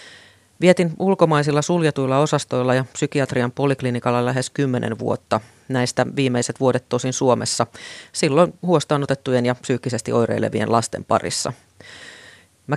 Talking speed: 110 wpm